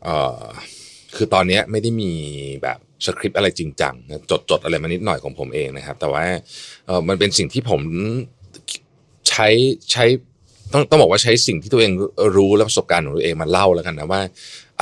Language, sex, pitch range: Thai, male, 90-115 Hz